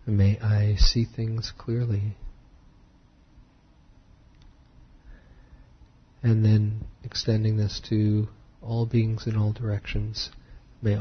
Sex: male